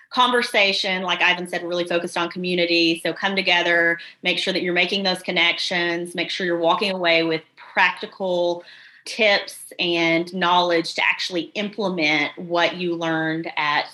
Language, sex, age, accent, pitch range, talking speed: English, female, 30-49, American, 175-215 Hz, 150 wpm